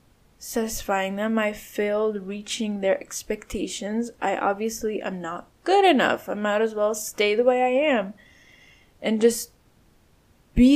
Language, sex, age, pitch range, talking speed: English, female, 10-29, 210-270 Hz, 140 wpm